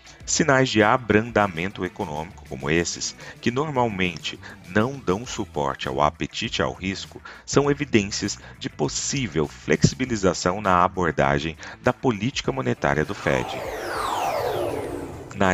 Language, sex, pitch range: Portuguese, male, 80-115 Hz